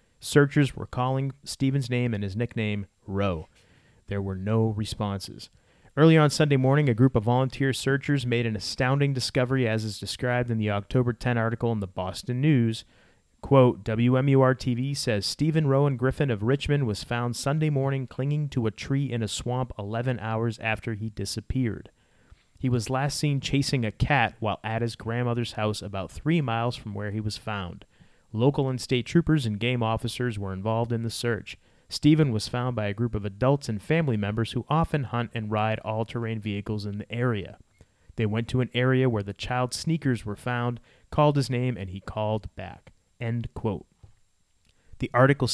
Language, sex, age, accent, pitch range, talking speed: English, male, 30-49, American, 105-135 Hz, 180 wpm